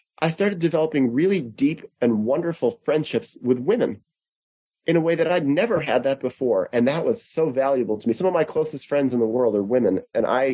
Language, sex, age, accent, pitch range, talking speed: English, male, 30-49, American, 125-175 Hz, 215 wpm